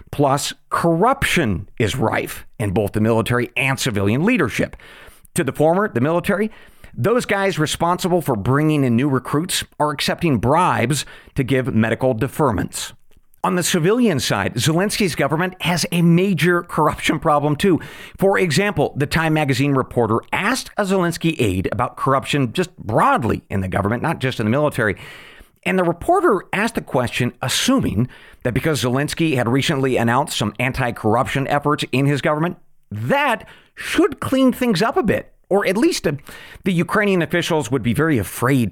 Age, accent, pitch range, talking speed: 40-59, American, 125-175 Hz, 160 wpm